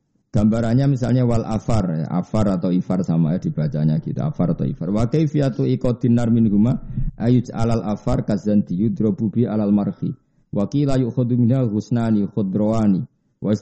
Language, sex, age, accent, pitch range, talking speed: Indonesian, male, 50-69, native, 105-140 Hz, 140 wpm